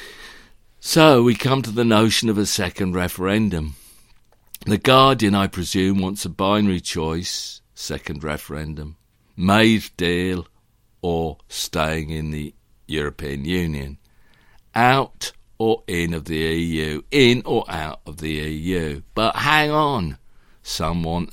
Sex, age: male, 50-69